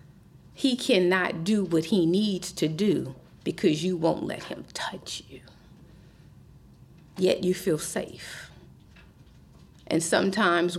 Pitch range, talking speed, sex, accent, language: 170-210 Hz, 115 wpm, female, American, English